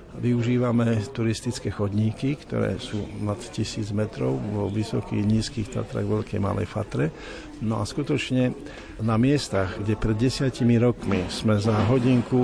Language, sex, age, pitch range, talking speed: Slovak, male, 50-69, 100-120 Hz, 130 wpm